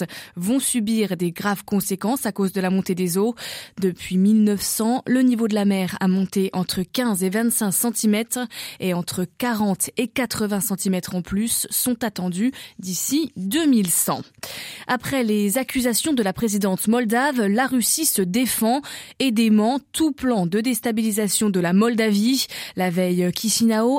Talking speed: 155 wpm